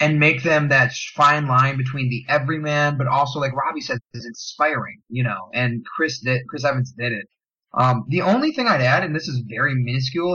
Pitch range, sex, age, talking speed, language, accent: 125-155 Hz, male, 30-49, 210 wpm, English, American